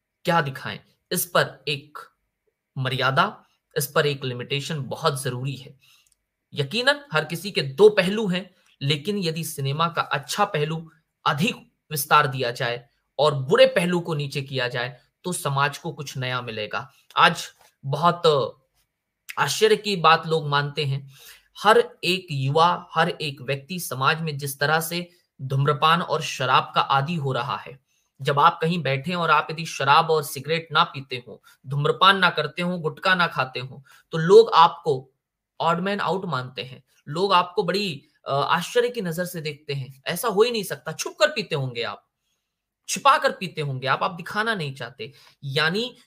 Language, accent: Hindi, native